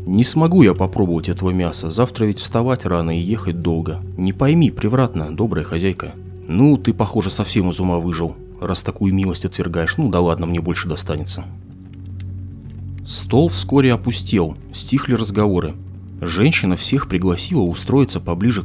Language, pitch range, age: Russian, 85-120 Hz, 30-49